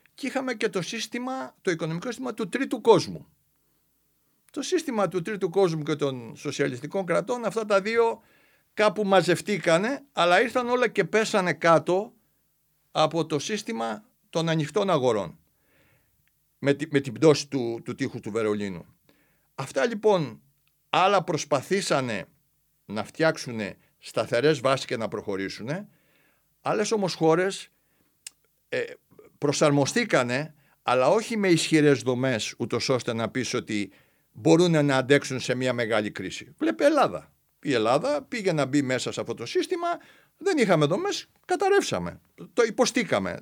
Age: 60-79